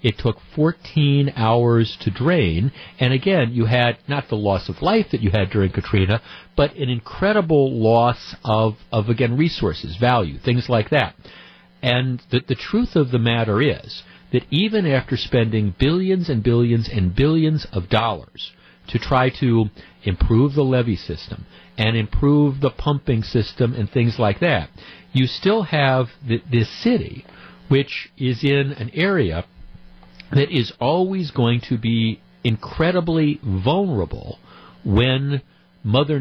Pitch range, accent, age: 110-145 Hz, American, 50-69